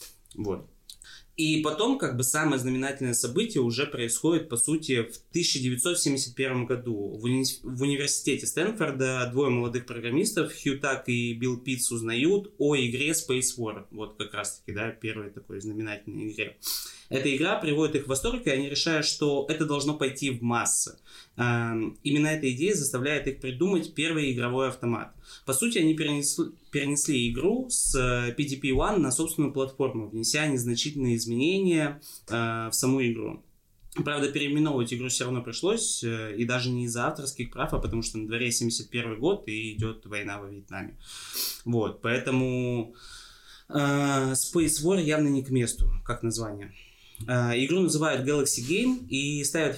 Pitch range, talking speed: 115-145 Hz, 155 wpm